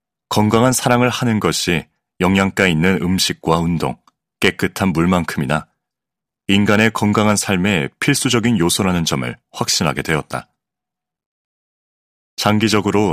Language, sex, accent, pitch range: Korean, male, native, 80-110 Hz